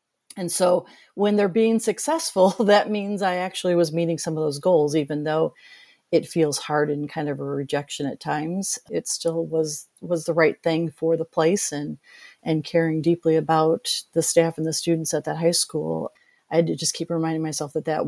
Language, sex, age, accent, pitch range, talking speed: English, female, 40-59, American, 160-190 Hz, 205 wpm